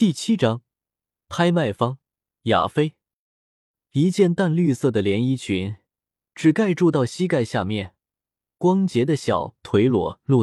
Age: 20-39